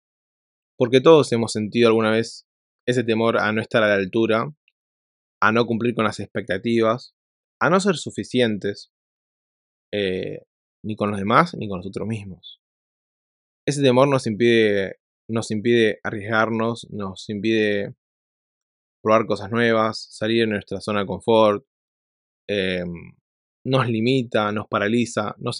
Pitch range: 100-115 Hz